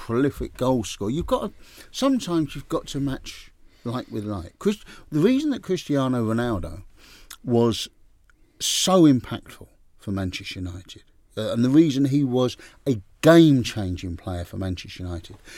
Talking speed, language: 160 wpm, English